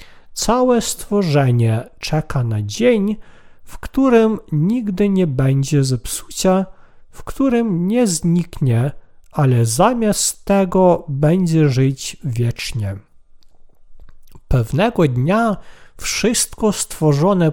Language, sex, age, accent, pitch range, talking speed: Polish, male, 50-69, native, 130-205 Hz, 85 wpm